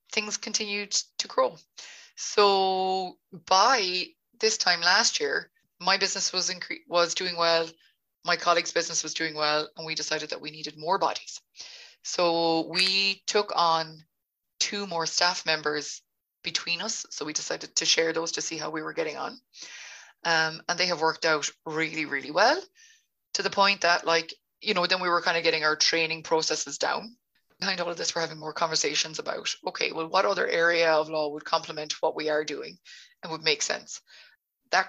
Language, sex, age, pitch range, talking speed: English, female, 20-39, 160-205 Hz, 185 wpm